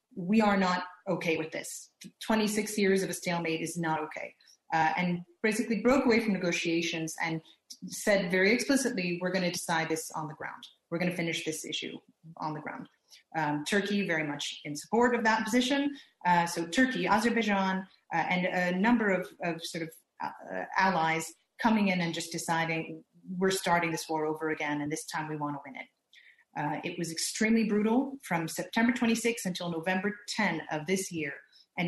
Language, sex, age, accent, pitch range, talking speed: English, female, 30-49, American, 165-210 Hz, 190 wpm